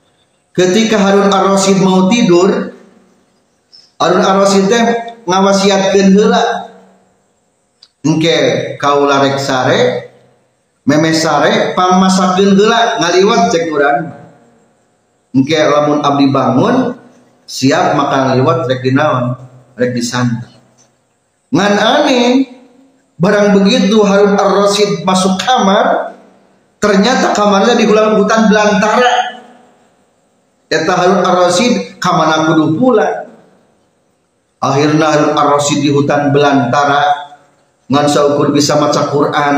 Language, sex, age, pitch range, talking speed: Indonesian, male, 40-59, 145-210 Hz, 85 wpm